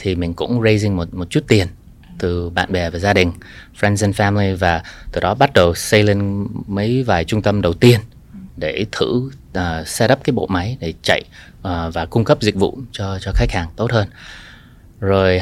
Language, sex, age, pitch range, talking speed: Vietnamese, male, 20-39, 90-115 Hz, 205 wpm